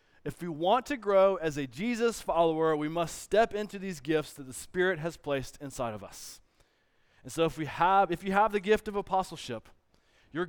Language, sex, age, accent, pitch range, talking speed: English, male, 20-39, American, 175-230 Hz, 205 wpm